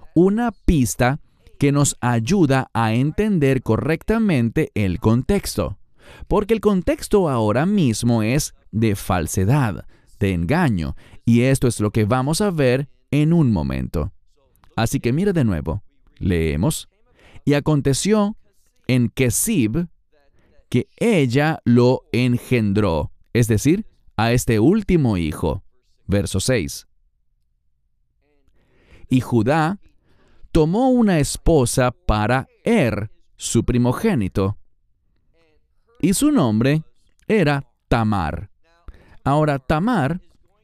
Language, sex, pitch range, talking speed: English, male, 105-155 Hz, 100 wpm